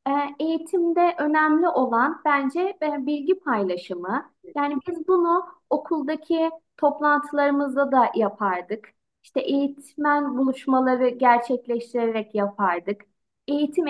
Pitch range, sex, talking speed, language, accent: 255-335 Hz, female, 80 wpm, Turkish, native